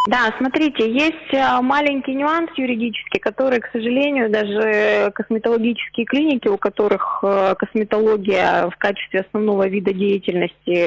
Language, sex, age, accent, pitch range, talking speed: Russian, female, 20-39, native, 195-230 Hz, 110 wpm